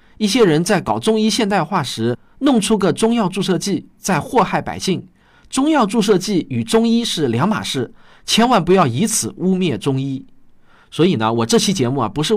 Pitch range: 140-220 Hz